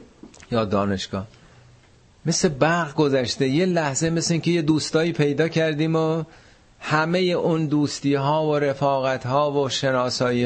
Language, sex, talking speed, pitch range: Persian, male, 130 wpm, 105-145 Hz